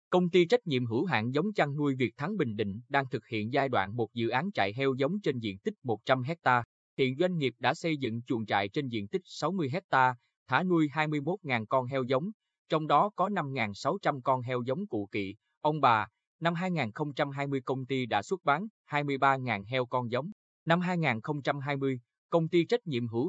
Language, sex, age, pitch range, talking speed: Vietnamese, male, 20-39, 115-150 Hz, 200 wpm